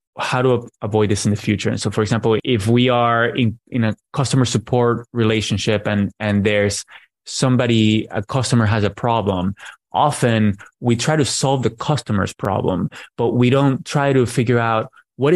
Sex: male